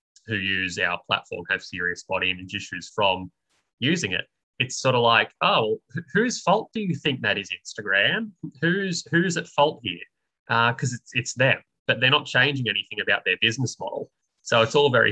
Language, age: English, 20-39